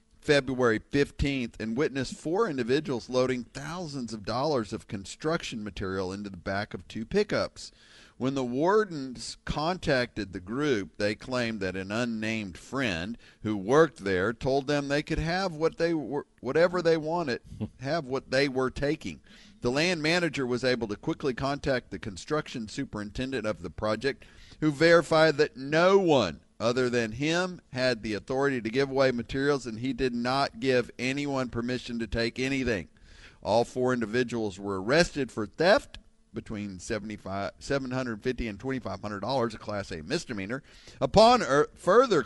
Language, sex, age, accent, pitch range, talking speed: English, male, 50-69, American, 110-145 Hz, 150 wpm